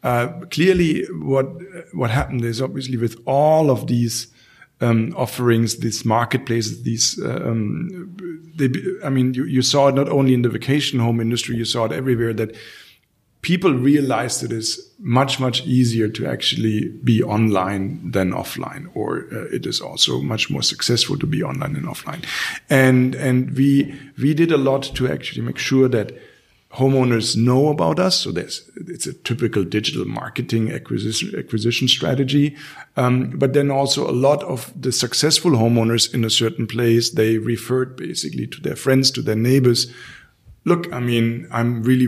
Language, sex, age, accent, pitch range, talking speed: German, male, 50-69, German, 115-140 Hz, 165 wpm